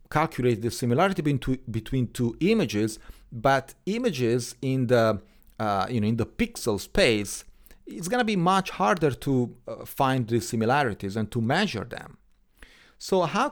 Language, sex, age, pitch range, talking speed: English, male, 40-59, 115-160 Hz, 150 wpm